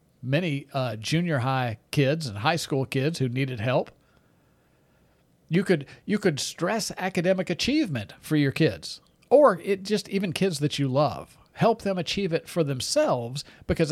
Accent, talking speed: American, 160 wpm